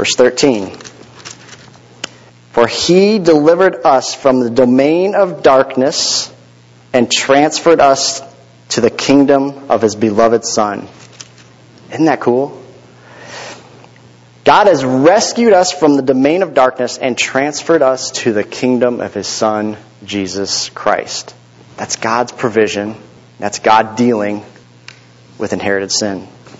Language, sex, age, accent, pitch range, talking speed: English, male, 30-49, American, 110-145 Hz, 120 wpm